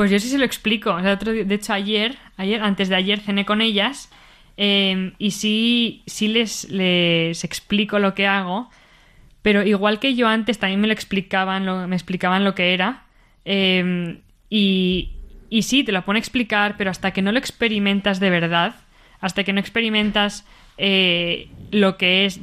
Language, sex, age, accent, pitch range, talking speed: Spanish, female, 20-39, Spanish, 185-210 Hz, 185 wpm